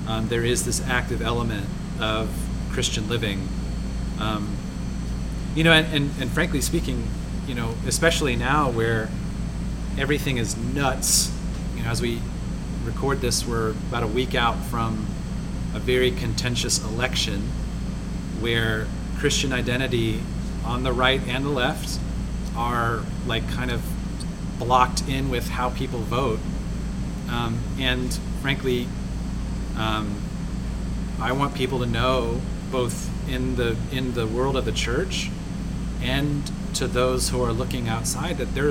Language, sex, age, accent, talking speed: English, male, 30-49, American, 135 wpm